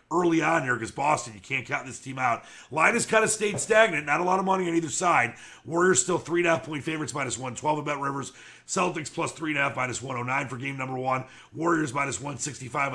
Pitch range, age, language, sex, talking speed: 125-165 Hz, 40-59, English, male, 215 wpm